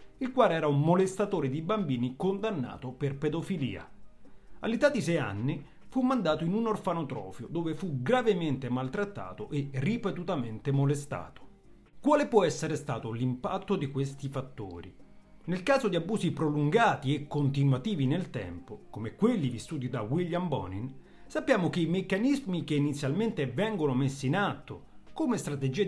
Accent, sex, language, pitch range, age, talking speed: native, male, Italian, 130-190 Hz, 40-59, 140 wpm